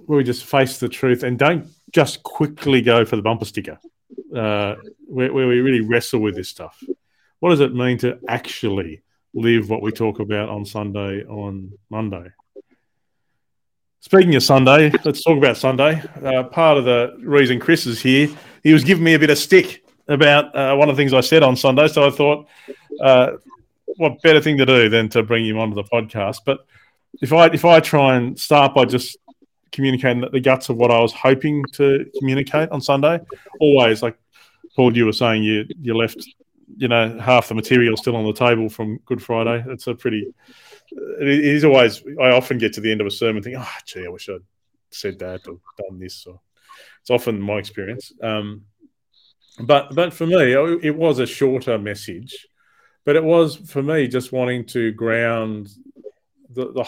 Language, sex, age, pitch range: English, male, 30-49, 115-150 Hz